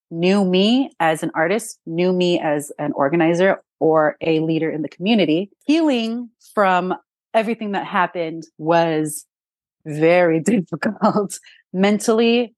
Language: English